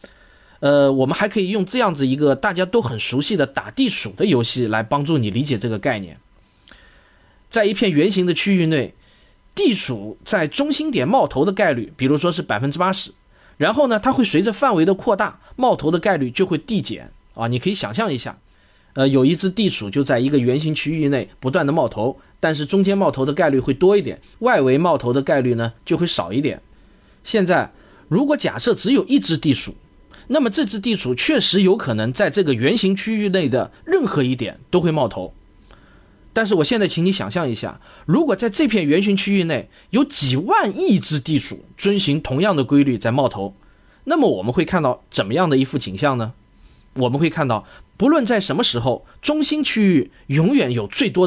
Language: Chinese